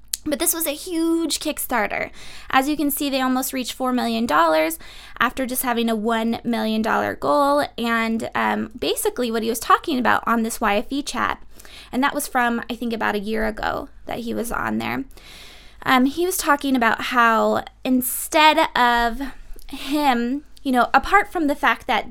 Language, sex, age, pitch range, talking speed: English, female, 20-39, 230-280 Hz, 175 wpm